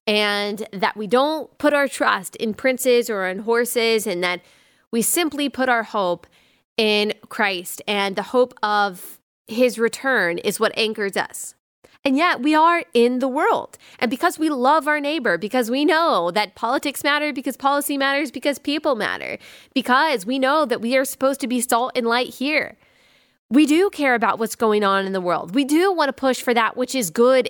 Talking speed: 195 wpm